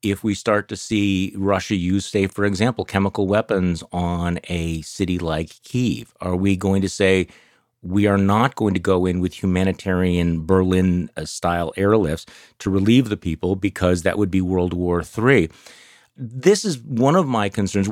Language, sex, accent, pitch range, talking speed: English, male, American, 95-115 Hz, 165 wpm